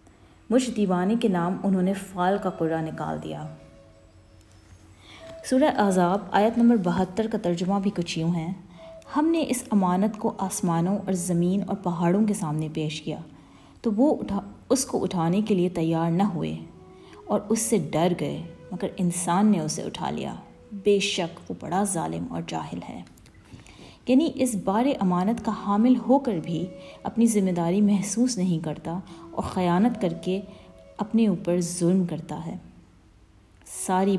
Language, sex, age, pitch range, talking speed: Urdu, female, 30-49, 165-220 Hz, 160 wpm